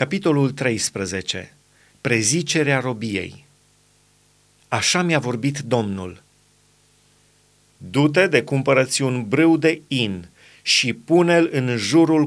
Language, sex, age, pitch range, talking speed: Romanian, male, 30-49, 125-150 Hz, 95 wpm